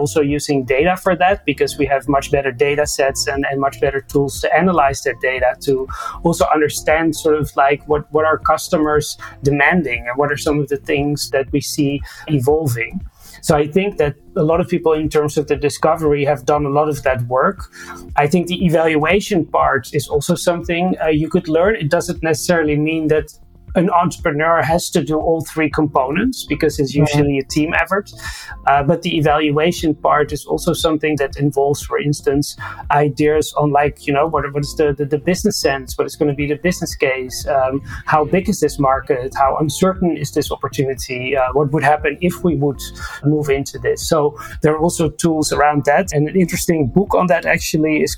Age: 30-49